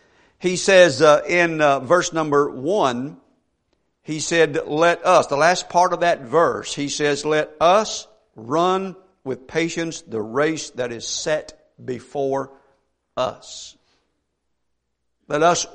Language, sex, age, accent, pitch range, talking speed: English, male, 50-69, American, 140-175 Hz, 130 wpm